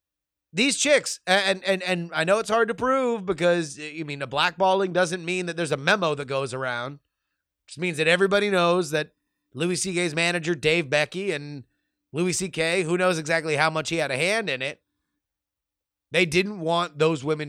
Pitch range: 120-175 Hz